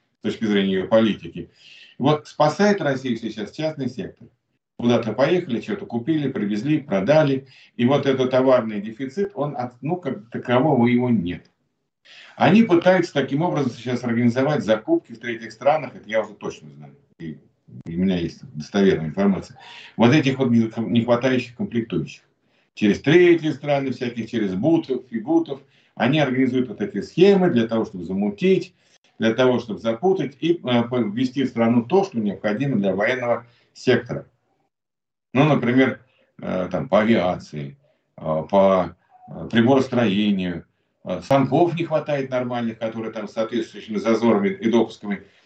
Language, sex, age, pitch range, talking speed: Russian, male, 50-69, 110-145 Hz, 135 wpm